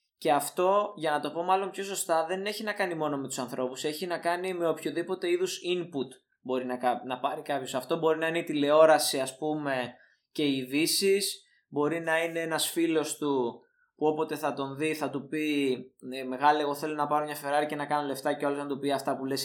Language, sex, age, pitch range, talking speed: Greek, male, 20-39, 140-175 Hz, 230 wpm